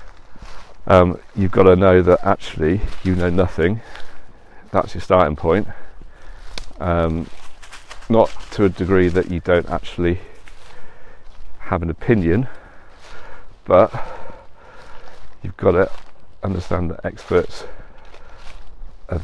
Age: 40-59